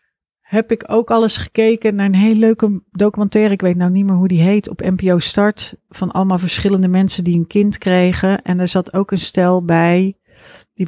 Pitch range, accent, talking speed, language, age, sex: 180-205 Hz, Dutch, 210 wpm, Dutch, 40-59, female